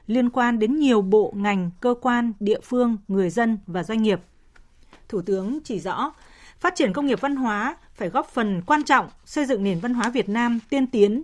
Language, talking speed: Vietnamese, 210 wpm